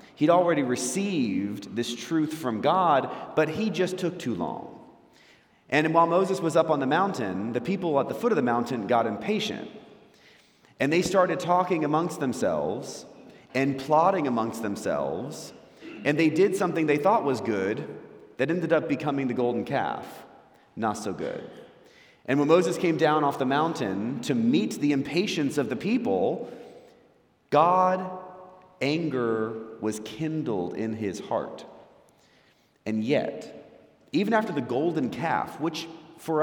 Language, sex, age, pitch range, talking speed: English, male, 30-49, 125-175 Hz, 150 wpm